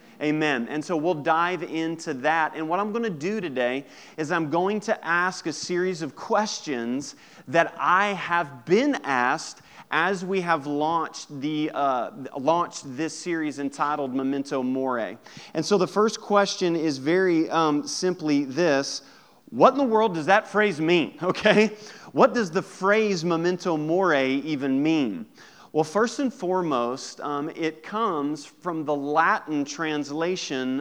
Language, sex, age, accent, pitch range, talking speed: English, male, 30-49, American, 150-190 Hz, 150 wpm